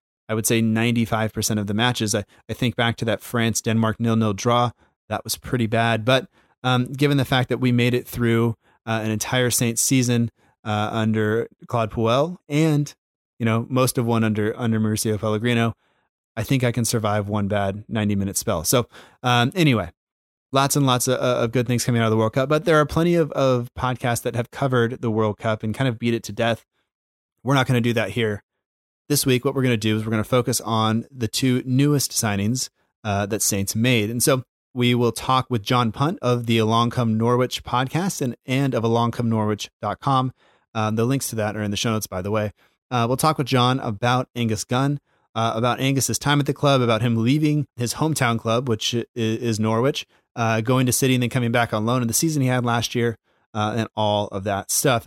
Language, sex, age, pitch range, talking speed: English, male, 20-39, 110-130 Hz, 220 wpm